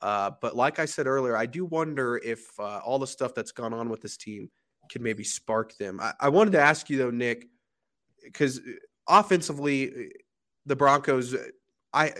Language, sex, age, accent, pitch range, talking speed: English, male, 20-39, American, 115-140 Hz, 180 wpm